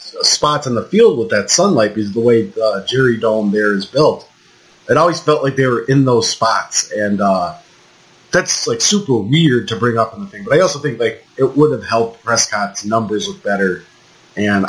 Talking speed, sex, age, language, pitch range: 210 wpm, male, 30-49, English, 110-145 Hz